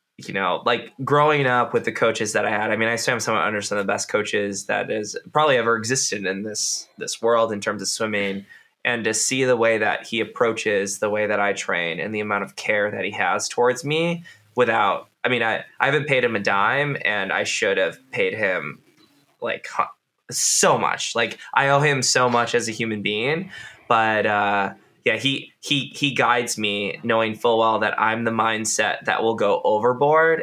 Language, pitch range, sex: English, 105-120 Hz, male